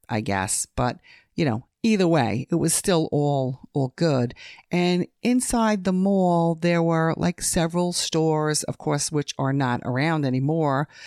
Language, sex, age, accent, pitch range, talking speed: English, female, 50-69, American, 140-175 Hz, 155 wpm